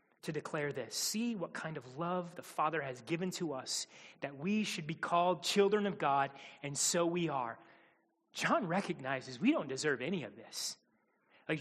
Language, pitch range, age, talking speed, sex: English, 145-185 Hz, 30-49, 180 wpm, male